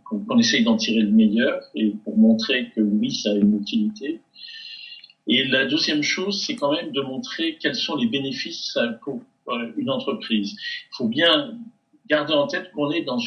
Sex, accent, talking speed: male, French, 180 wpm